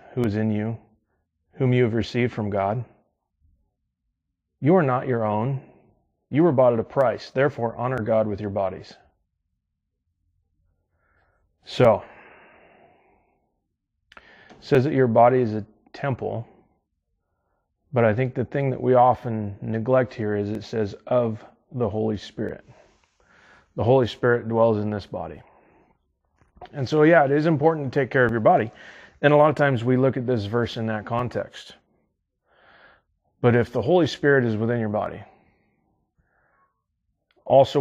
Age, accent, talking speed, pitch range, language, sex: 30-49, American, 150 wpm, 105-130 Hz, English, male